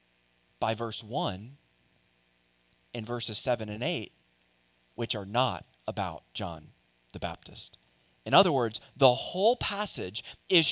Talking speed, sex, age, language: 125 wpm, male, 30-49, English